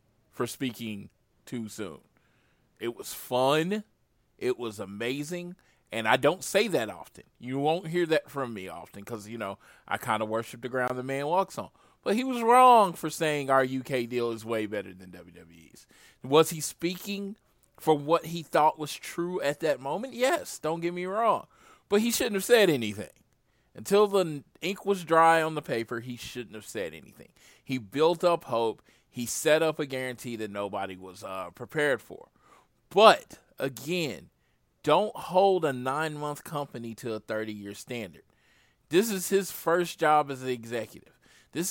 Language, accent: English, American